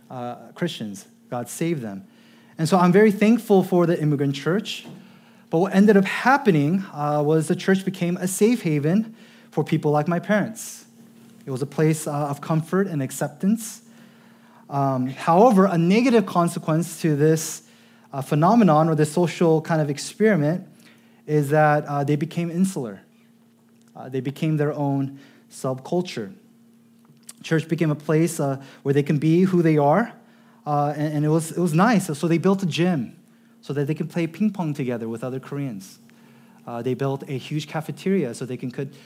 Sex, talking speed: male, 175 wpm